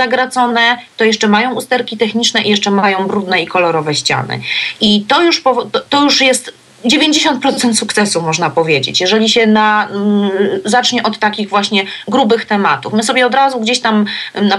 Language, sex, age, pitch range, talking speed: Polish, female, 30-49, 205-245 Hz, 150 wpm